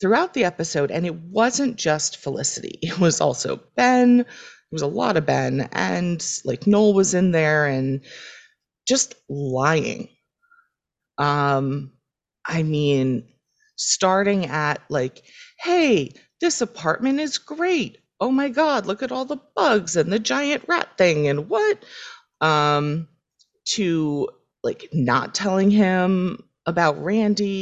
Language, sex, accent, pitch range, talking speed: English, female, American, 150-245 Hz, 135 wpm